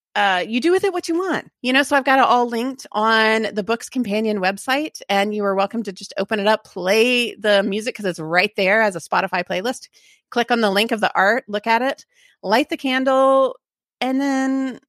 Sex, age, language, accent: female, 30-49, English, American